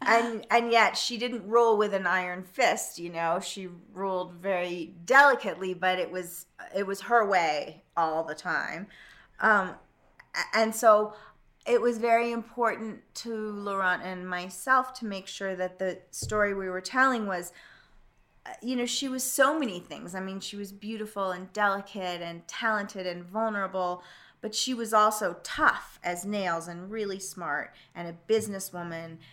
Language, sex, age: English, female, 30-49